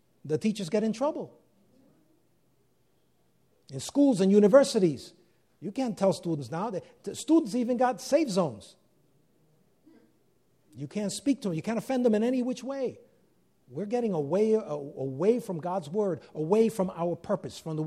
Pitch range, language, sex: 155-210 Hz, English, male